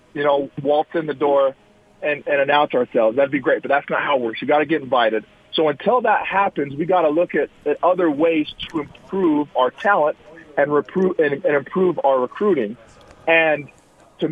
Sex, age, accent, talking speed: male, 40-59, American, 205 wpm